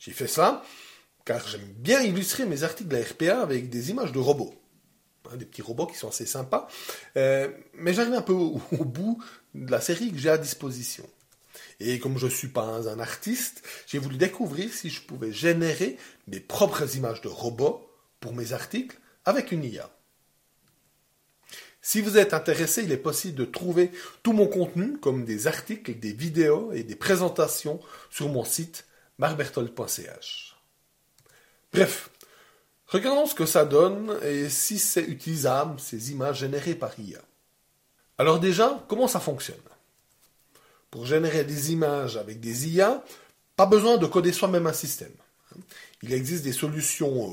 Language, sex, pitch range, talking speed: French, male, 135-195 Hz, 160 wpm